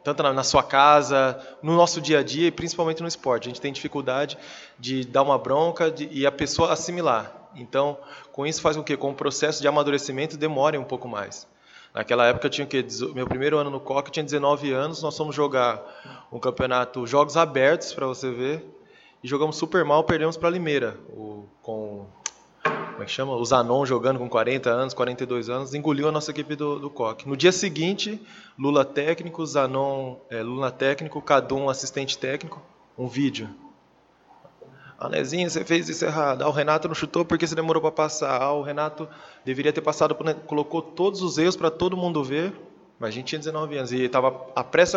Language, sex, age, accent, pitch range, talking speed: Portuguese, male, 20-39, Brazilian, 130-160 Hz, 190 wpm